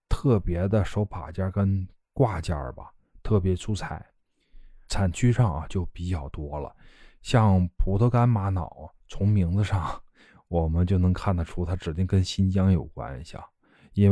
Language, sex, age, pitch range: Chinese, male, 20-39, 85-105 Hz